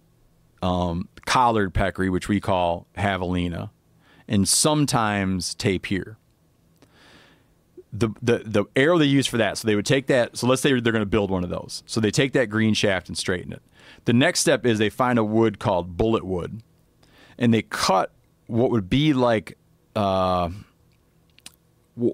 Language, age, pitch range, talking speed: English, 40-59, 100-120 Hz, 170 wpm